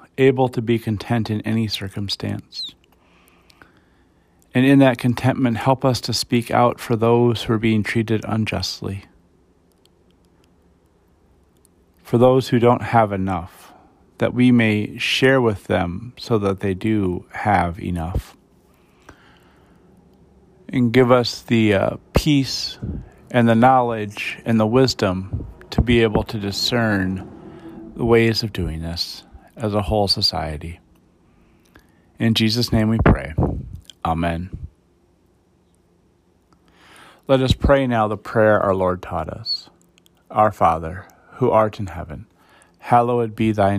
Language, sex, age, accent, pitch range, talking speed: English, male, 40-59, American, 85-115 Hz, 125 wpm